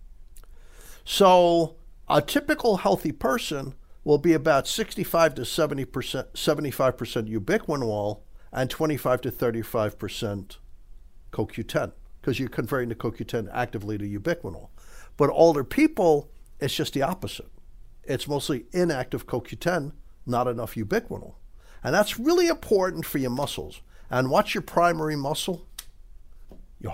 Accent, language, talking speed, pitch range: American, English, 110 wpm, 110-170 Hz